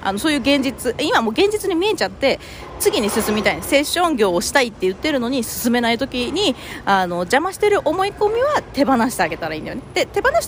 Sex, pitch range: female, 195-320 Hz